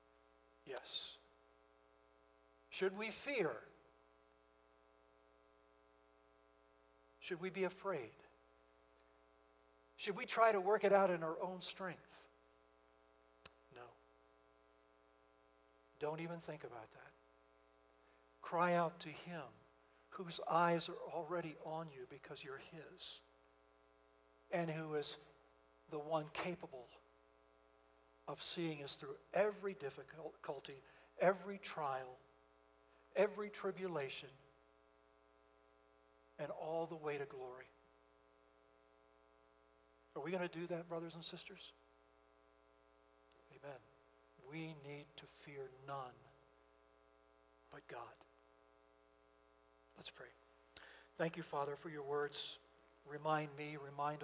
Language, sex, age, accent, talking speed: English, male, 60-79, American, 100 wpm